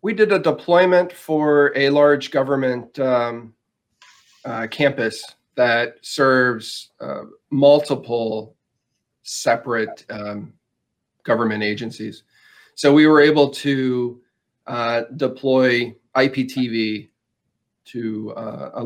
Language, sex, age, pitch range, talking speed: English, male, 40-59, 110-130 Hz, 95 wpm